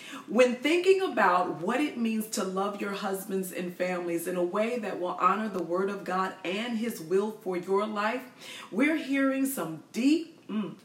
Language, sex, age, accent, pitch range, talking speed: English, female, 40-59, American, 190-260 Hz, 185 wpm